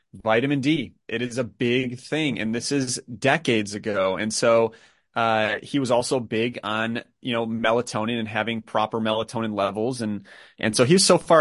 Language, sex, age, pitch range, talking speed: English, male, 30-49, 110-130 Hz, 180 wpm